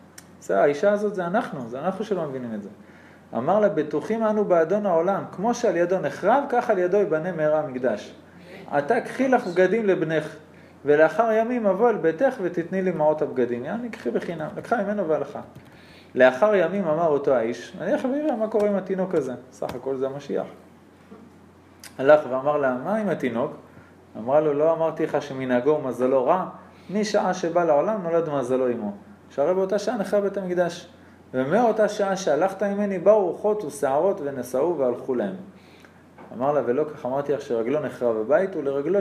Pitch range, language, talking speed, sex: 140-210 Hz, Hebrew, 165 wpm, male